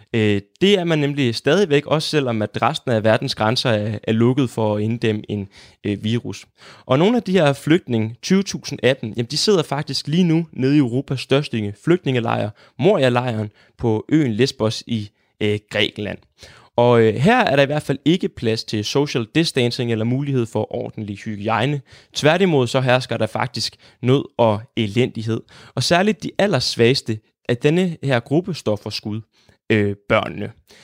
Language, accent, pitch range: Danish, native, 115-155 Hz